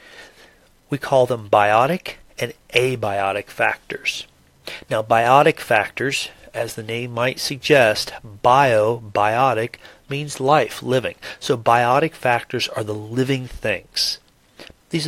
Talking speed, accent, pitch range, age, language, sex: 110 wpm, American, 110-135 Hz, 40-59, English, male